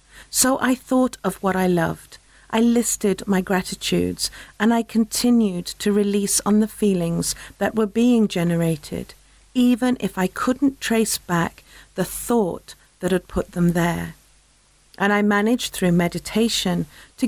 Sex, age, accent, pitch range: female, 50-69, British, 185-230 Hz